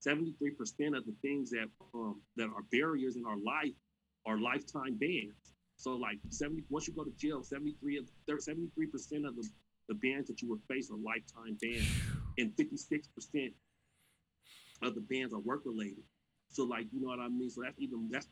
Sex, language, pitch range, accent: male, English, 110-135 Hz, American